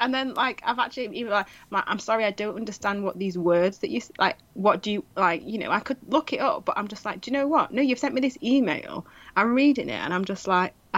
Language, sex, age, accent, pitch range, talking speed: English, female, 30-49, British, 165-205 Hz, 275 wpm